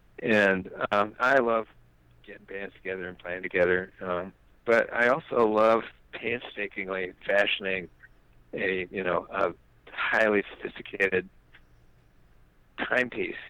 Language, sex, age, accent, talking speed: English, male, 50-69, American, 105 wpm